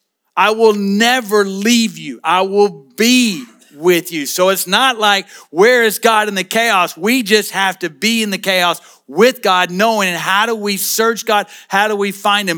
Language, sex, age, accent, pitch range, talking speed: English, male, 50-69, American, 185-225 Hz, 195 wpm